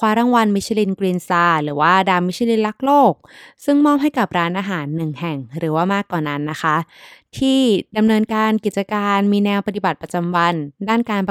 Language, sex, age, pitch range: Thai, female, 20-39, 170-220 Hz